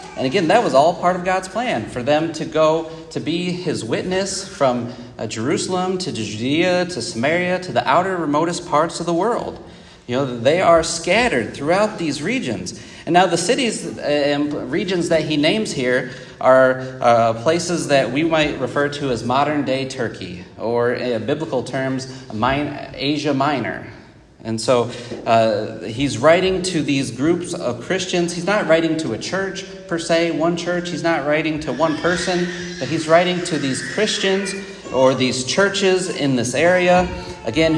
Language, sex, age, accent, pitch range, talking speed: English, male, 30-49, American, 130-175 Hz, 165 wpm